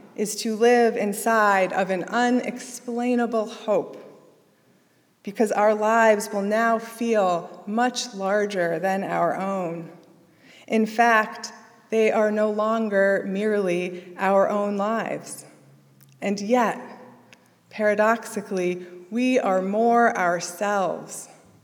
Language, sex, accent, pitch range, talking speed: English, female, American, 175-215 Hz, 100 wpm